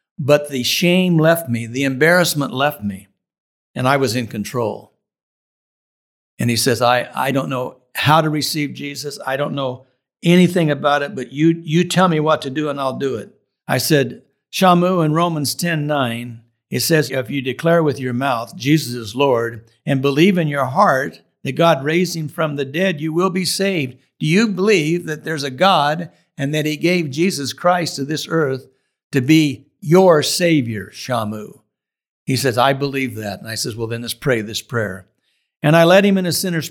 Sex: male